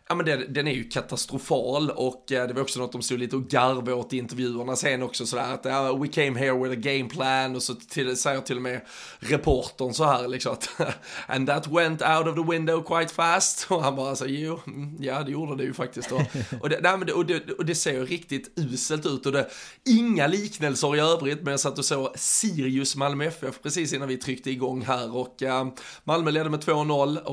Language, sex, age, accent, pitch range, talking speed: Swedish, male, 20-39, native, 130-160 Hz, 220 wpm